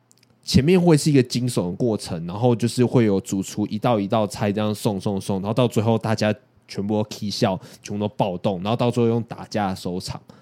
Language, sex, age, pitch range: Chinese, male, 20-39, 100-130 Hz